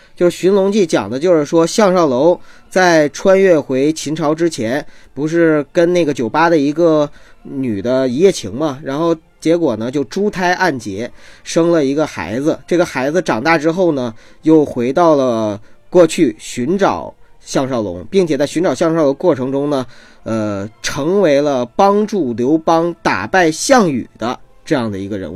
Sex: male